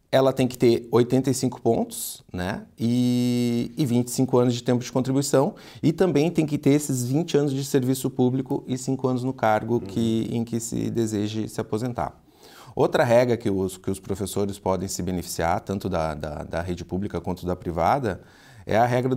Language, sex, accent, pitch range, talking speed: Portuguese, male, Brazilian, 100-130 Hz, 180 wpm